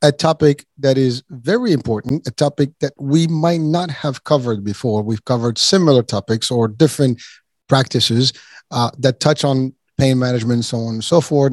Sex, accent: male, American